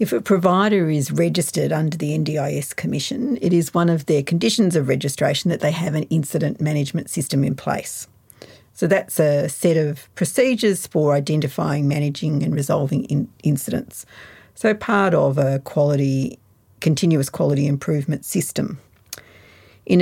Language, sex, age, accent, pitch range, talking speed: English, female, 50-69, Australian, 145-195 Hz, 145 wpm